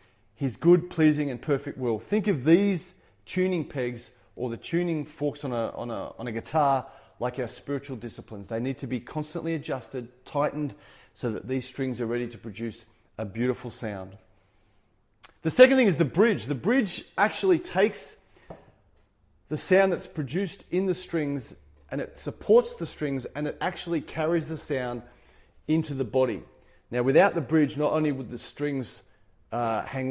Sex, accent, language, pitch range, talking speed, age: male, Australian, English, 115-165 Hz, 165 wpm, 30-49